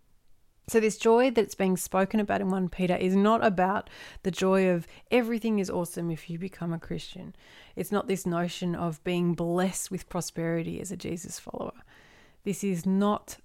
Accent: Australian